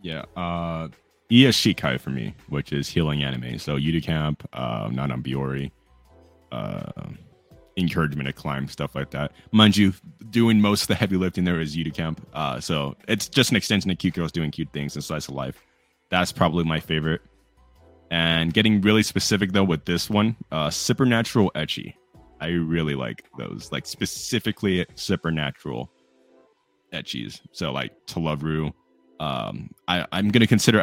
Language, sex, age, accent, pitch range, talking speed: English, male, 20-39, American, 70-90 Hz, 165 wpm